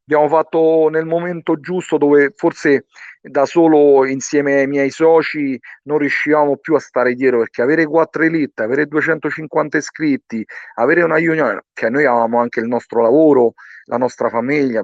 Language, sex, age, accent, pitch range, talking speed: Italian, male, 40-59, native, 115-160 Hz, 160 wpm